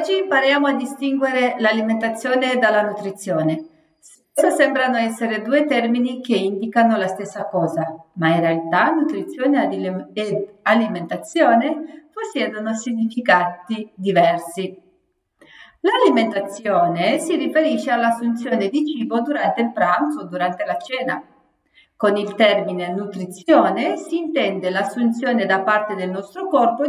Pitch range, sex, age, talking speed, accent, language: 195-285 Hz, female, 40-59, 115 wpm, native, Italian